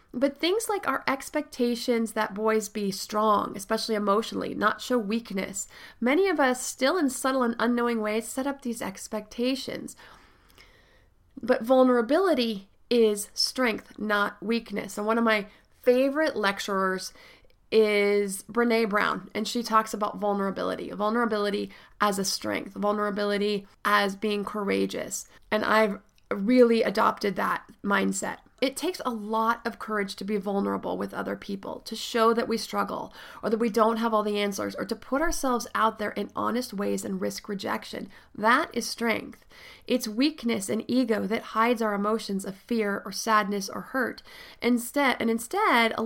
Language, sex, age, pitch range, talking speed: English, female, 30-49, 210-250 Hz, 155 wpm